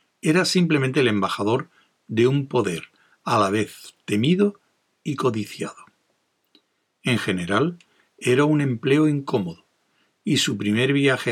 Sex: male